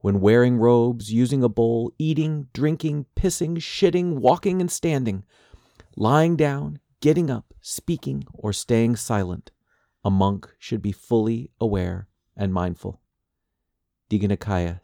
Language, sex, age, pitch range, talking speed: English, male, 40-59, 90-120 Hz, 120 wpm